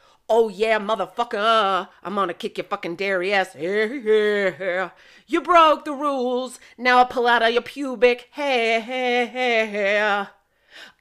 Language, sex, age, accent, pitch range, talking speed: English, female, 40-59, American, 190-250 Hz, 155 wpm